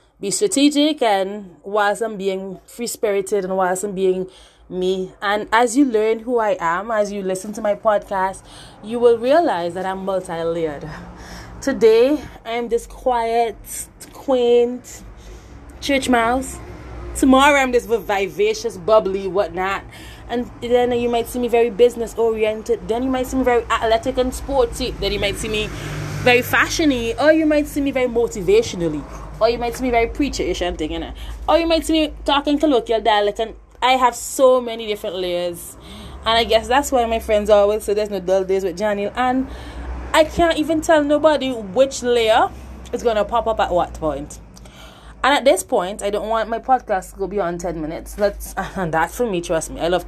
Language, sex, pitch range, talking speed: English, female, 190-245 Hz, 185 wpm